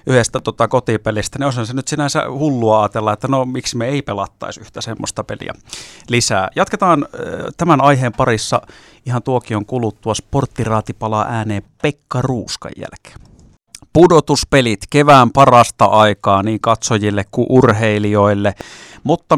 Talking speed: 135 wpm